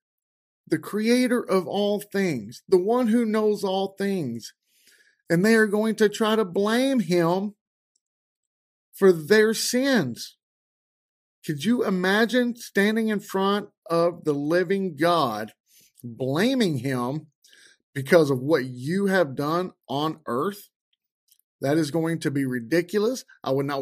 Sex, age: male, 40-59